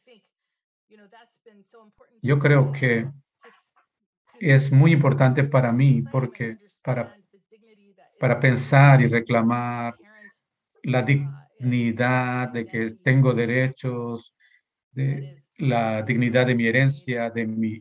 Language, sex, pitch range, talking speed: Spanish, male, 115-140 Hz, 95 wpm